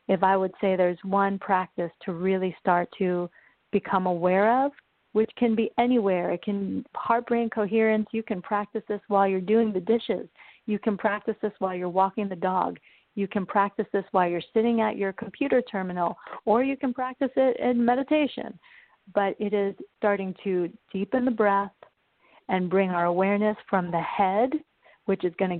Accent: American